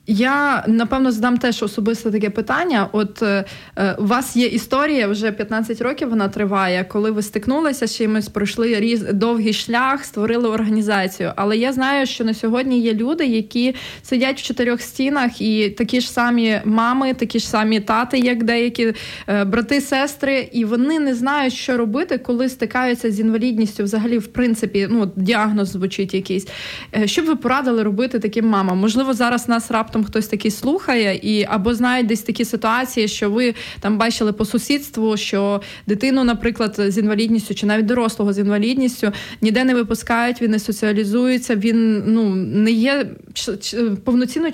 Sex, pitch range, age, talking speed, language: female, 215-250 Hz, 20-39, 155 wpm, Ukrainian